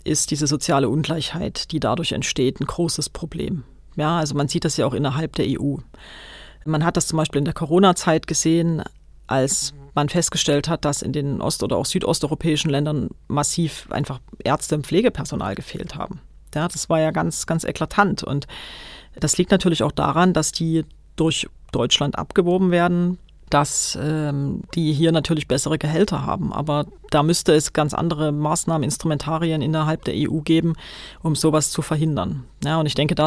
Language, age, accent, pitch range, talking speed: German, 40-59, German, 145-170 Hz, 170 wpm